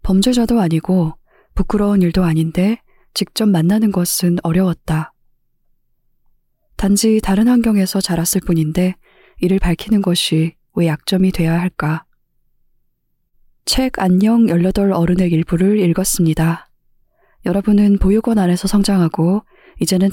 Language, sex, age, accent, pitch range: Korean, female, 20-39, native, 170-210 Hz